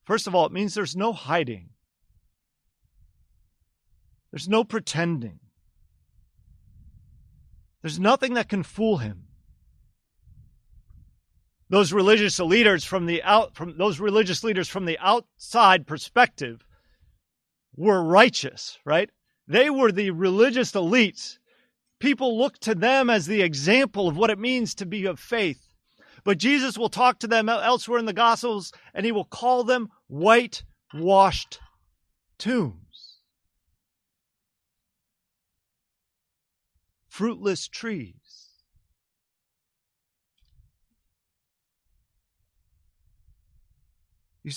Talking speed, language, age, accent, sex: 100 wpm, English, 40-59, American, male